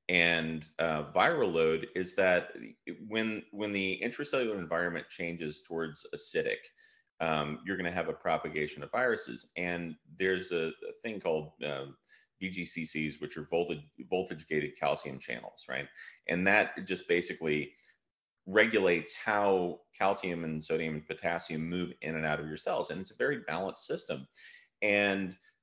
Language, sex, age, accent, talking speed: English, male, 30-49, American, 145 wpm